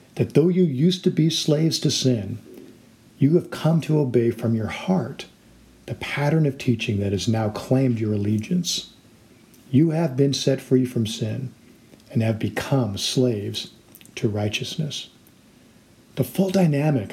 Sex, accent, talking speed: male, American, 150 wpm